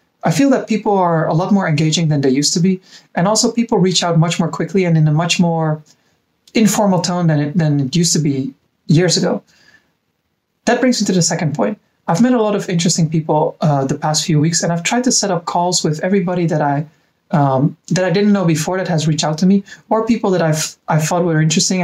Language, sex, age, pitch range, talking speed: English, male, 30-49, 155-195 Hz, 240 wpm